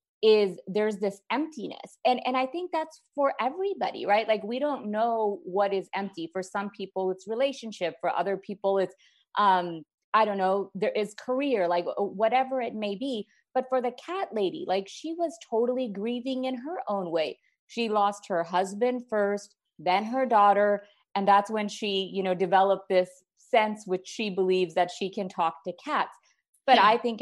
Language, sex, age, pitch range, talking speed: English, female, 30-49, 195-250 Hz, 185 wpm